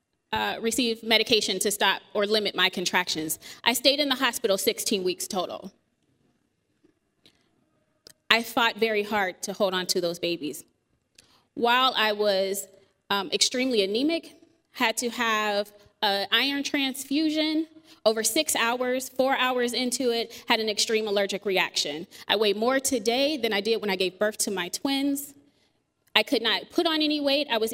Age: 20-39